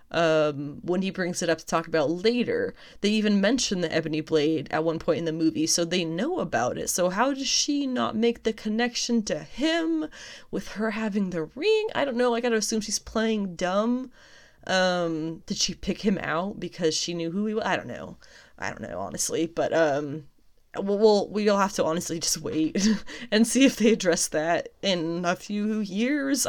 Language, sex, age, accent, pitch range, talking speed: English, female, 20-39, American, 165-220 Hz, 205 wpm